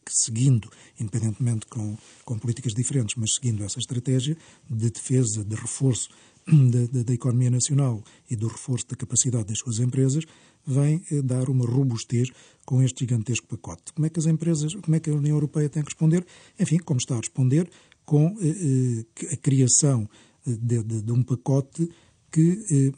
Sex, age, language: male, 50-69, Portuguese